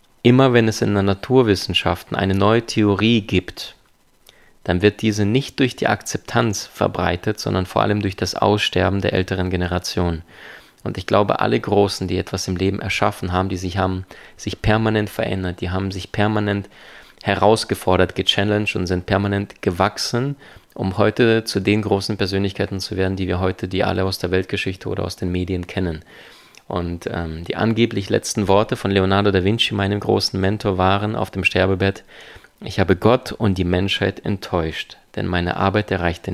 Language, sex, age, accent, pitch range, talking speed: German, male, 20-39, German, 90-105 Hz, 170 wpm